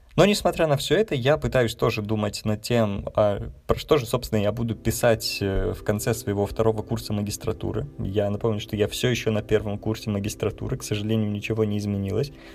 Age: 20-39